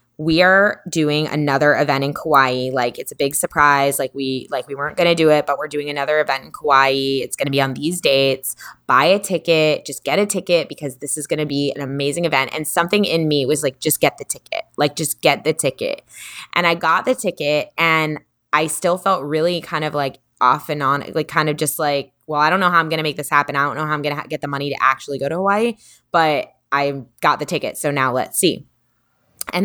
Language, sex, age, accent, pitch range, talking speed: English, female, 20-39, American, 140-170 Hz, 250 wpm